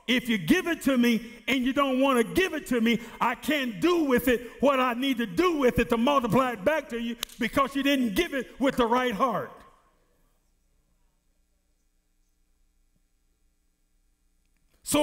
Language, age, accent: English, 50-69, American